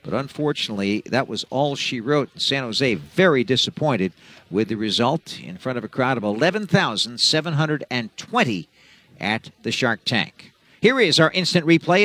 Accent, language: American, English